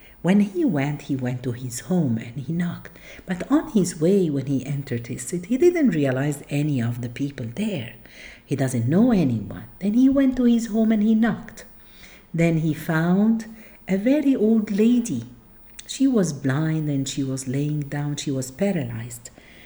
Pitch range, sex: 140-215 Hz, female